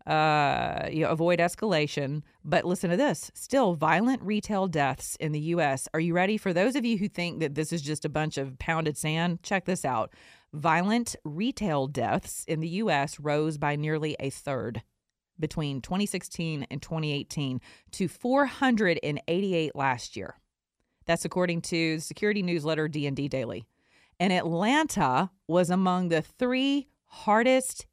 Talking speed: 155 wpm